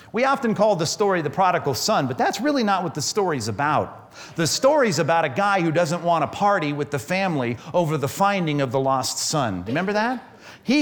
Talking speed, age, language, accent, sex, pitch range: 215 wpm, 40-59, English, American, male, 115-195 Hz